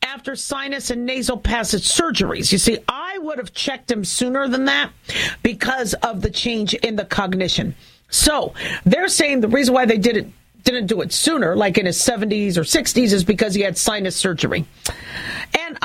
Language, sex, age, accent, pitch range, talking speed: English, female, 50-69, American, 195-245 Hz, 180 wpm